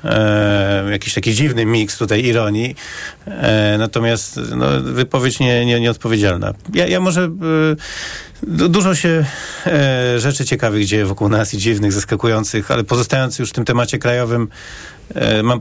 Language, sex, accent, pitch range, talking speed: Polish, male, native, 100-130 Hz, 115 wpm